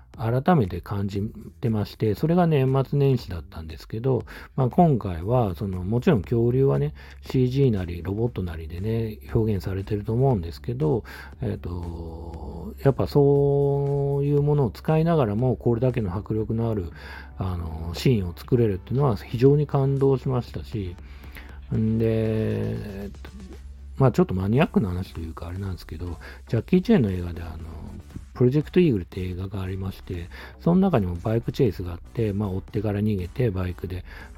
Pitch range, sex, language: 85-130 Hz, male, Japanese